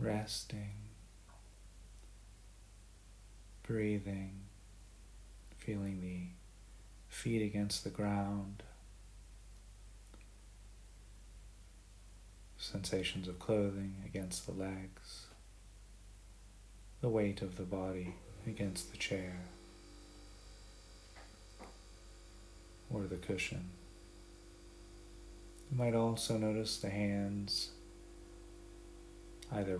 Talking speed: 65 wpm